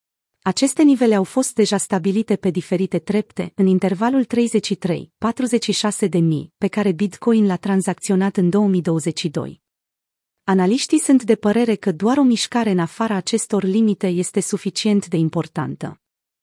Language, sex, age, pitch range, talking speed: Romanian, female, 30-49, 180-225 Hz, 140 wpm